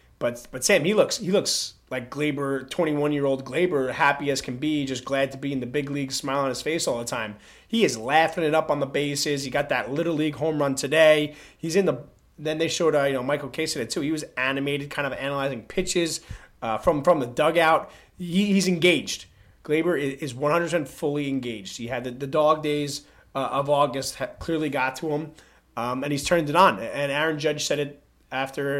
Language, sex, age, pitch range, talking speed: English, male, 30-49, 130-155 Hz, 225 wpm